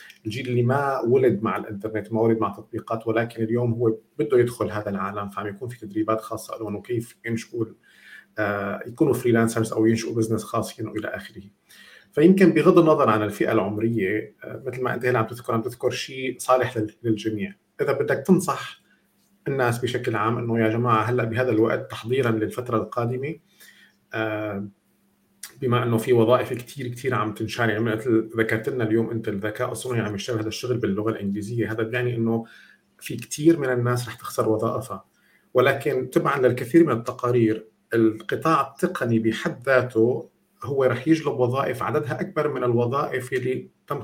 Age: 50-69